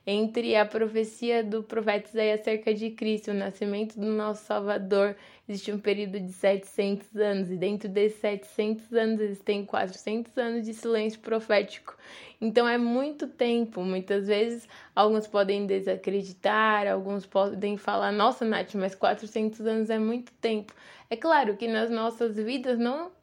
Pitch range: 205-230 Hz